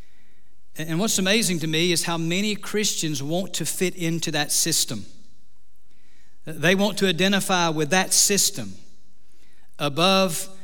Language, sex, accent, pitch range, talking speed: English, male, American, 150-190 Hz, 130 wpm